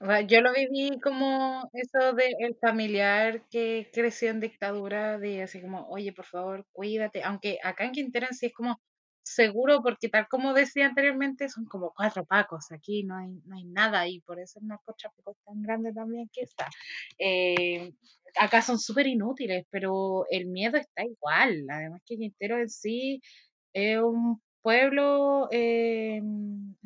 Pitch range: 200-255 Hz